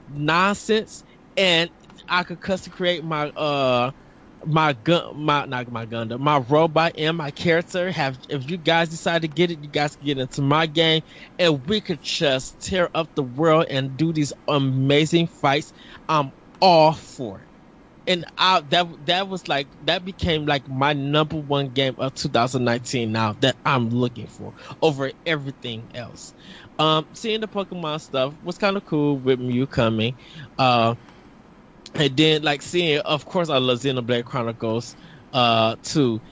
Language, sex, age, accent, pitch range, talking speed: English, male, 20-39, American, 130-170 Hz, 165 wpm